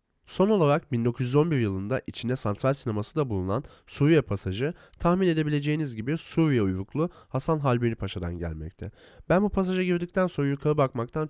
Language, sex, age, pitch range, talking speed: Turkish, male, 30-49, 95-150 Hz, 145 wpm